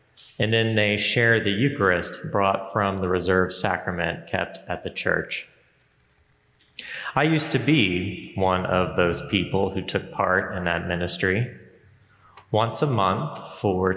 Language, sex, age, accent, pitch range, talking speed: English, male, 30-49, American, 90-110 Hz, 140 wpm